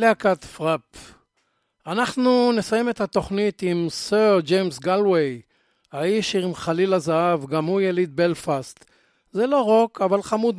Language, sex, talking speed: Hebrew, male, 130 wpm